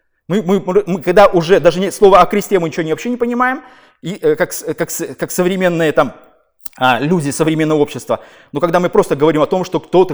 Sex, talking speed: male, 200 wpm